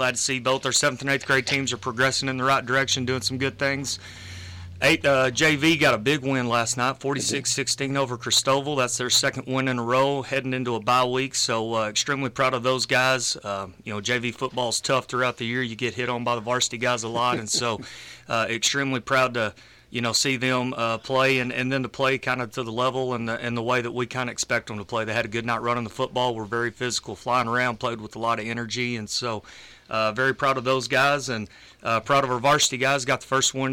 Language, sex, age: English, male, 30-49